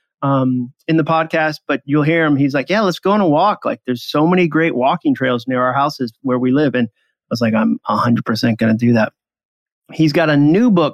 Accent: American